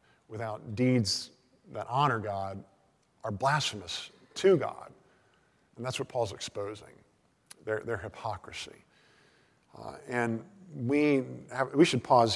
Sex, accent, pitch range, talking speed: male, American, 110-135 Hz, 115 wpm